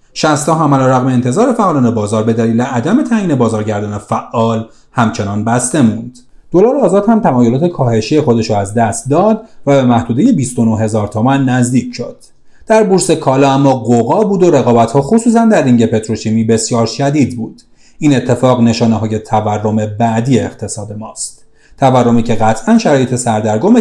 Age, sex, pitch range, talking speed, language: 30-49, male, 115-155 Hz, 150 wpm, Persian